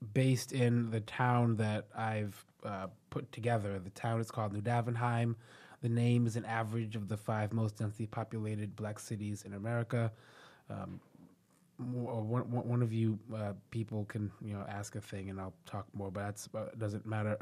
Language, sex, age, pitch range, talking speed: English, male, 20-39, 110-125 Hz, 180 wpm